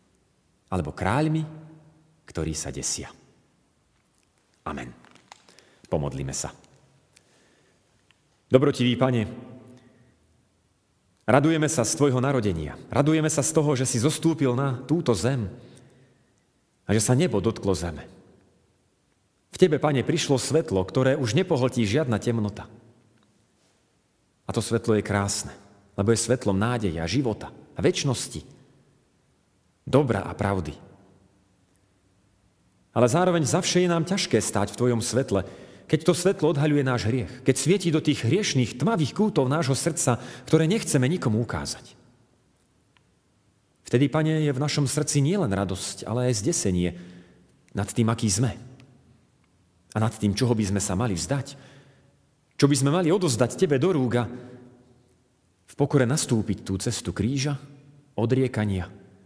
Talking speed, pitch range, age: 125 wpm, 100-145 Hz, 40-59